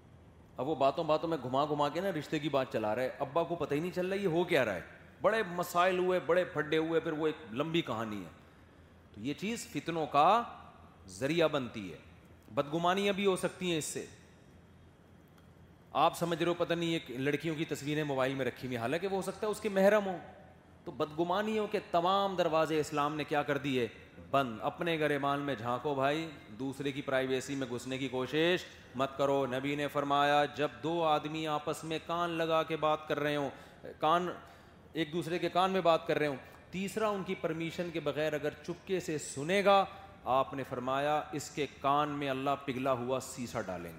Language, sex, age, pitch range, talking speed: Urdu, male, 30-49, 135-170 Hz, 205 wpm